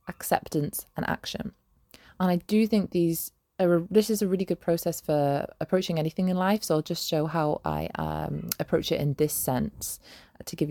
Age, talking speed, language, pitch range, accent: 20-39, 195 wpm, English, 160-205 Hz, British